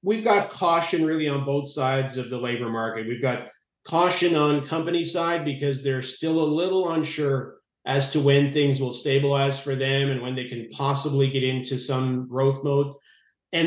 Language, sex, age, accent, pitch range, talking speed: English, male, 40-59, American, 135-165 Hz, 185 wpm